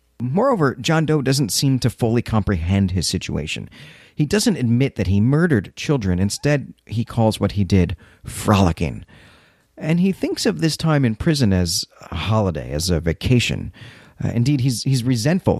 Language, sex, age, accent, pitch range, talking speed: English, male, 40-59, American, 95-135 Hz, 165 wpm